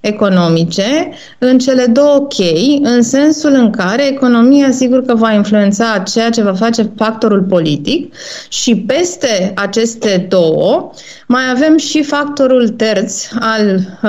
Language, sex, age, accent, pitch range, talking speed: Romanian, female, 30-49, native, 205-260 Hz, 130 wpm